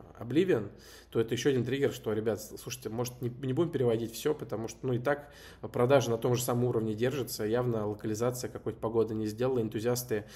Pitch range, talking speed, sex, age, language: 110-125 Hz, 195 wpm, male, 20-39, Russian